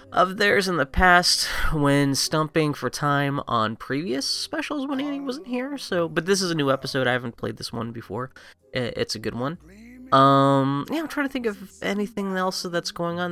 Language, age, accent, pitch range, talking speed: English, 30-49, American, 125-195 Hz, 205 wpm